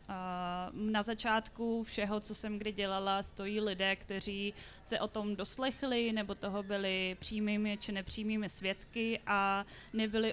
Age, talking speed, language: 20-39, 135 wpm, Czech